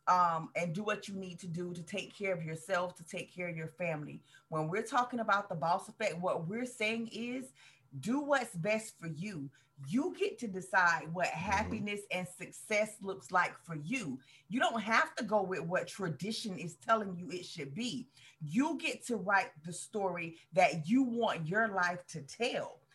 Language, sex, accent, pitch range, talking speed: English, female, American, 170-225 Hz, 195 wpm